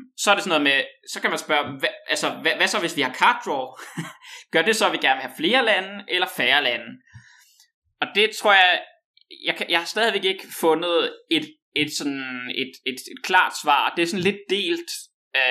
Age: 20-39